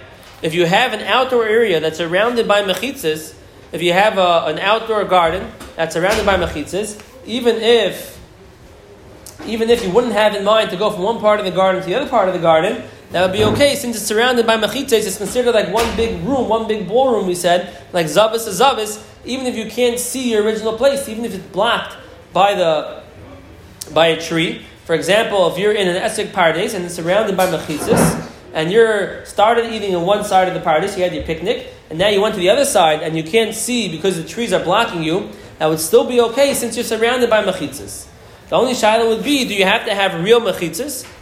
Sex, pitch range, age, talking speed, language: male, 180-235 Hz, 20-39, 225 wpm, English